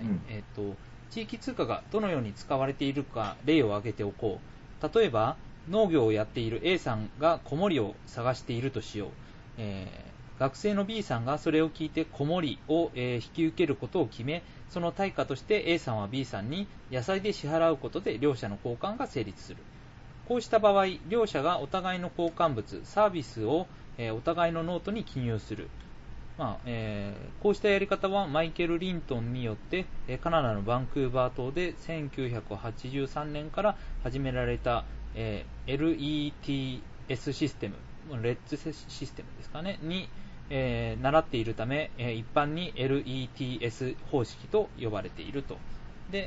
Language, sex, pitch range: Japanese, male, 110-160 Hz